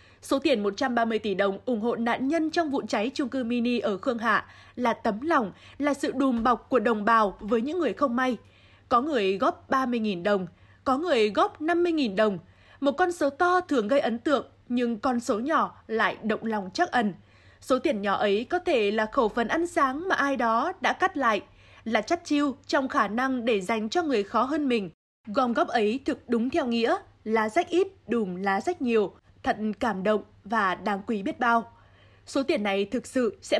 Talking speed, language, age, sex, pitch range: 210 wpm, Vietnamese, 20-39, female, 220-290 Hz